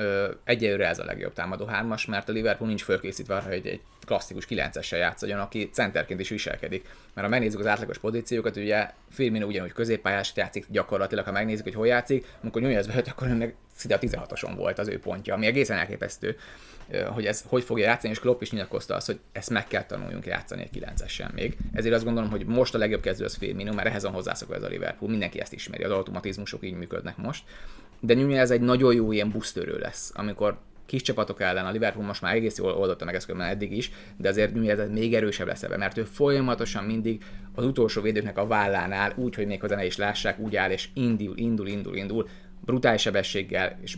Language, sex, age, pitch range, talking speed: Hungarian, male, 30-49, 100-120 Hz, 215 wpm